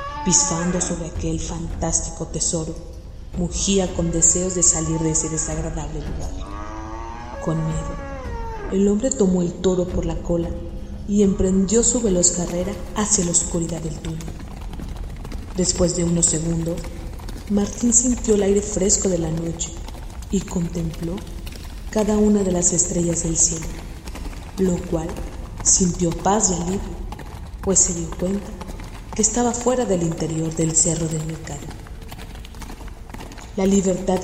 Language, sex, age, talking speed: Spanish, female, 30-49, 135 wpm